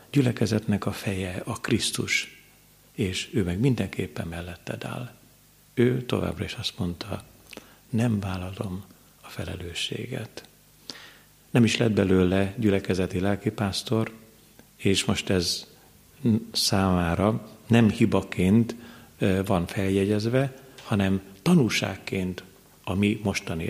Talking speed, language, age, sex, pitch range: 100 wpm, Hungarian, 50-69, male, 95-115 Hz